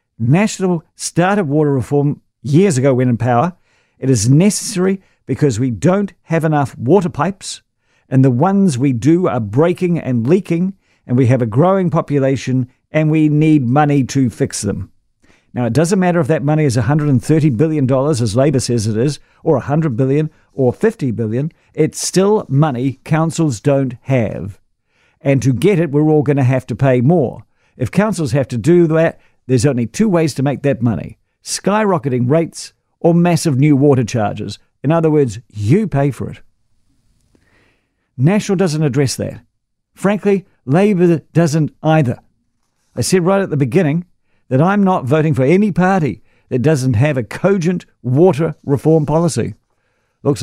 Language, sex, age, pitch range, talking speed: English, male, 50-69, 125-170 Hz, 165 wpm